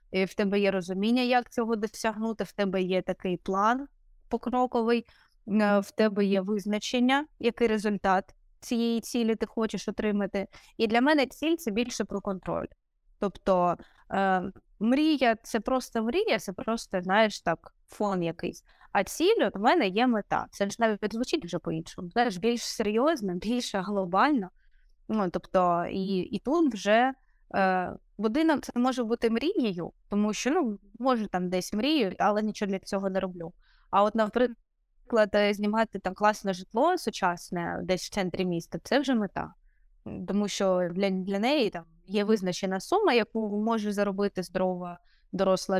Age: 20-39